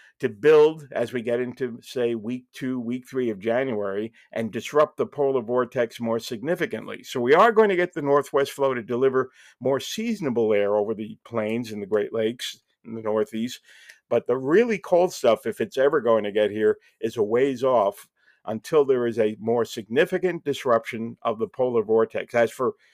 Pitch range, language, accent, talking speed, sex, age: 115-140 Hz, English, American, 190 wpm, male, 50-69